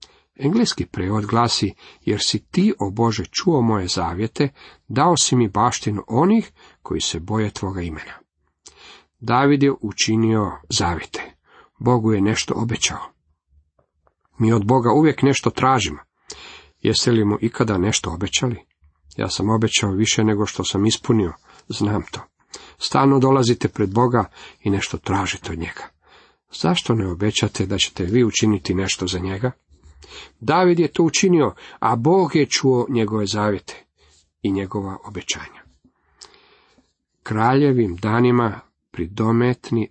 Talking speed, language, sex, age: 130 wpm, Croatian, male, 40-59